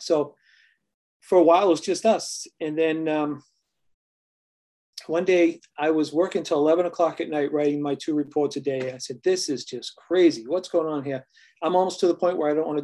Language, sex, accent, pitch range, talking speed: English, male, American, 140-170 Hz, 220 wpm